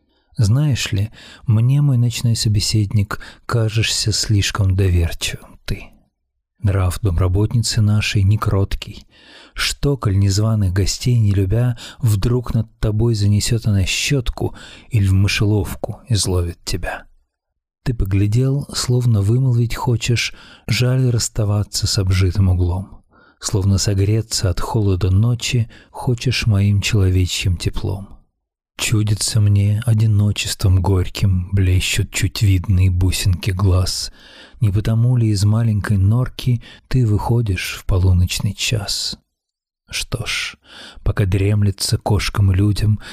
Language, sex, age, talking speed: Russian, male, 40-59, 105 wpm